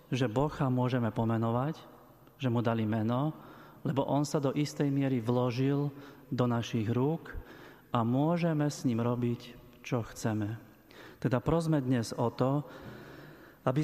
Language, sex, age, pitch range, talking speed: Slovak, male, 40-59, 125-150 Hz, 135 wpm